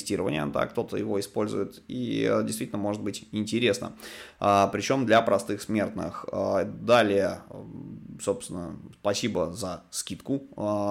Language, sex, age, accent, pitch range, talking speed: Russian, male, 20-39, native, 100-130 Hz, 115 wpm